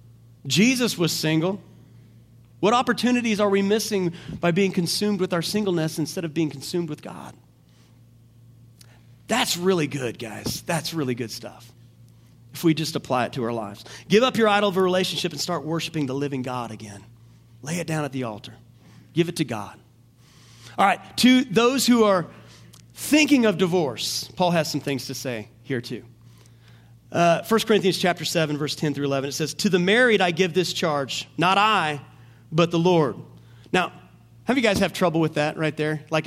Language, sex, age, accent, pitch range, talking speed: English, male, 40-59, American, 130-195 Hz, 185 wpm